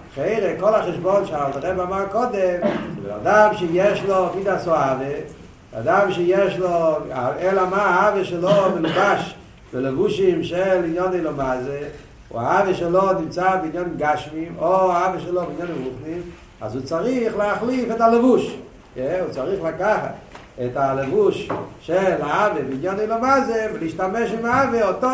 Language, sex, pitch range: Hebrew, male, 160-225 Hz